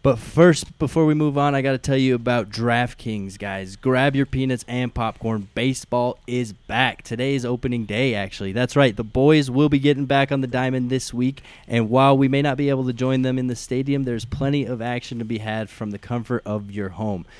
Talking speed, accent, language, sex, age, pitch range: 230 wpm, American, English, male, 20-39, 110-135 Hz